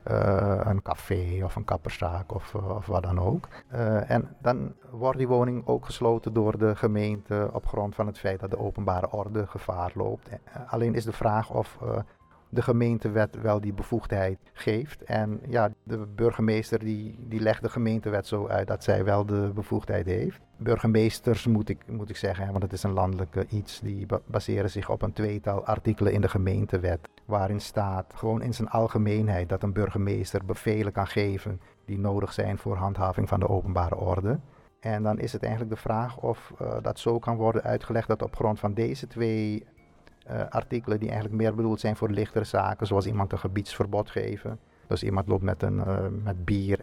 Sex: male